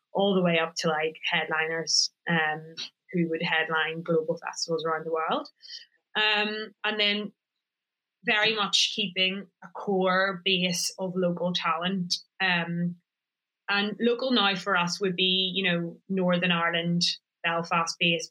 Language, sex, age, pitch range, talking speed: English, female, 20-39, 175-205 Hz, 135 wpm